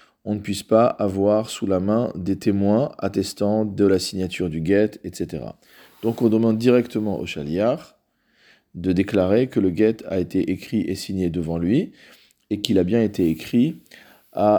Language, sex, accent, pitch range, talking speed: French, male, French, 95-115 Hz, 175 wpm